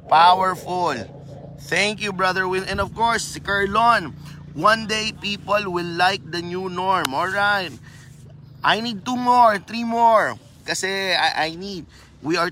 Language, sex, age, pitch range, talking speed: Filipino, male, 20-39, 165-205 Hz, 150 wpm